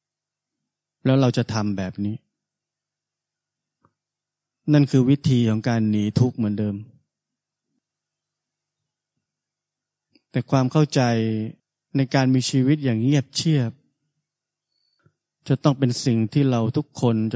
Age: 20-39